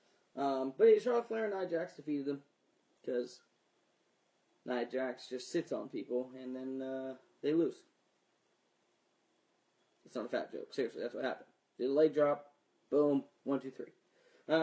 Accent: American